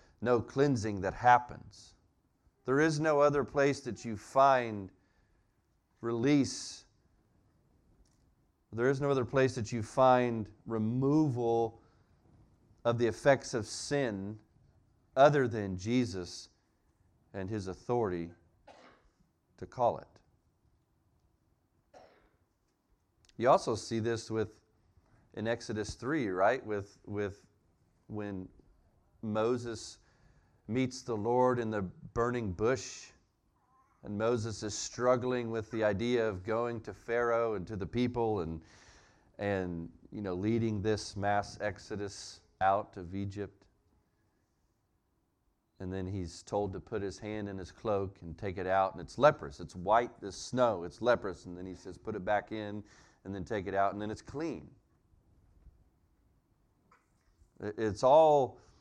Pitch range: 95-120 Hz